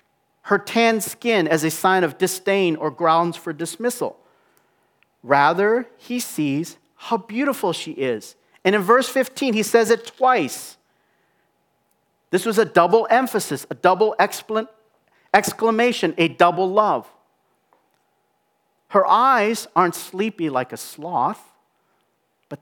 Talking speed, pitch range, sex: 120 wpm, 145-215 Hz, male